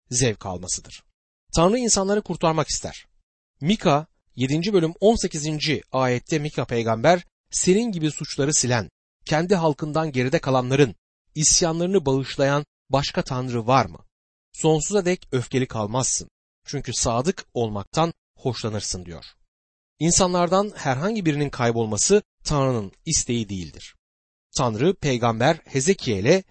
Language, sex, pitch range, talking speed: Turkish, male, 110-165 Hz, 105 wpm